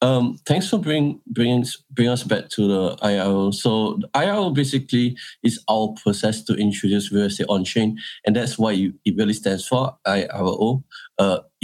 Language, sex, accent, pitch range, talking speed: English, male, Malaysian, 100-125 Hz, 160 wpm